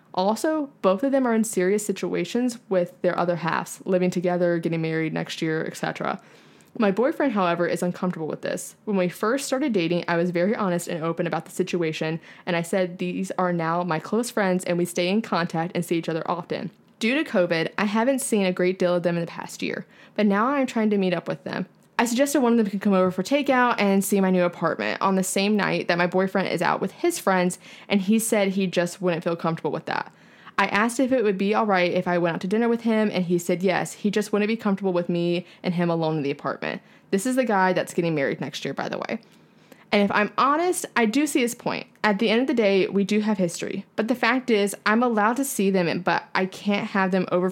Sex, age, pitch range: female, 20-39, 175-220 Hz